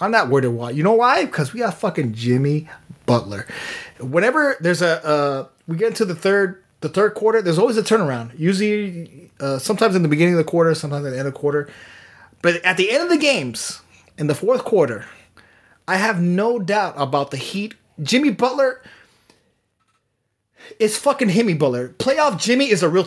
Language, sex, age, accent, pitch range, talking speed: English, male, 30-49, American, 150-220 Hz, 190 wpm